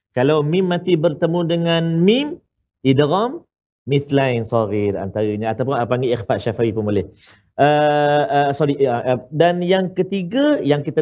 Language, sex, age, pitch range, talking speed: Malayalam, male, 40-59, 125-195 Hz, 165 wpm